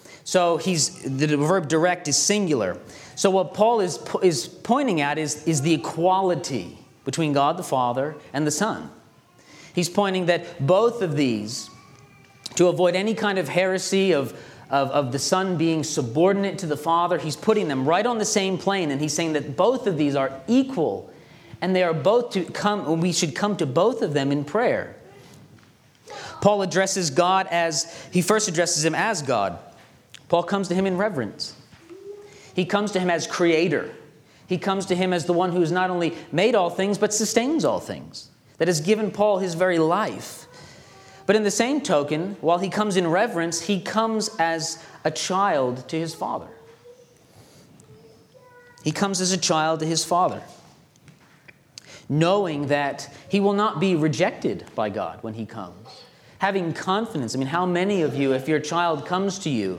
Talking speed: 180 wpm